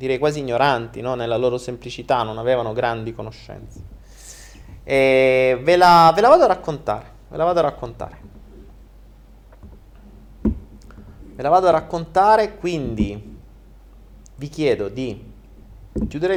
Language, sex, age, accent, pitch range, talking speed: Italian, male, 30-49, native, 100-135 Hz, 125 wpm